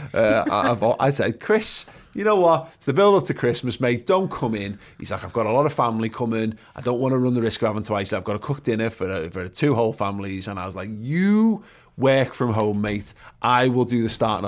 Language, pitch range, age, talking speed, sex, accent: English, 95-120 Hz, 30-49, 255 wpm, male, British